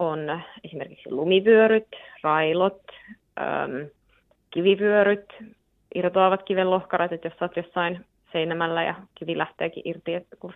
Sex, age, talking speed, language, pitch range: female, 20-39, 110 wpm, Finnish, 170-205 Hz